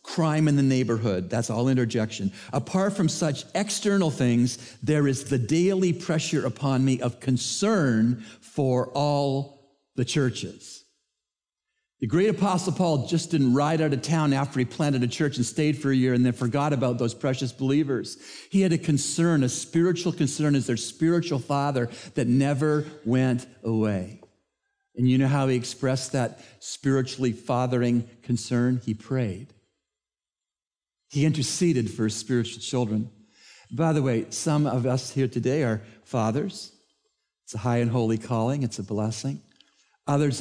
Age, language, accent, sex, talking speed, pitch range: 50-69, English, American, male, 155 wpm, 120-145 Hz